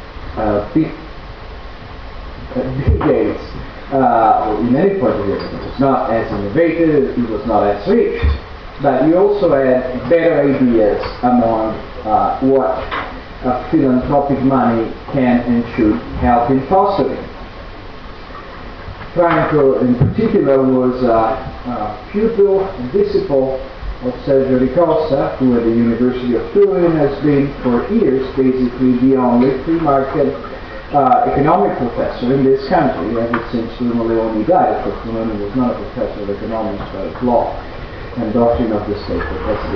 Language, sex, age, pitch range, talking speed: Italian, male, 40-59, 105-135 Hz, 140 wpm